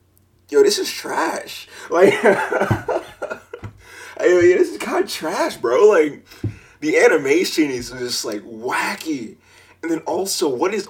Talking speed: 120 wpm